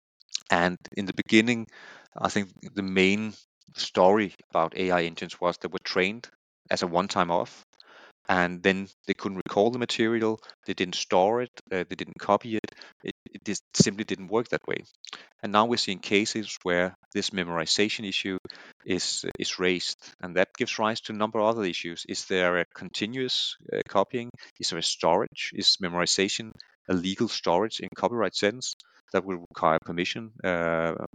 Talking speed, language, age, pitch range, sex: 170 wpm, English, 30-49, 90-110 Hz, male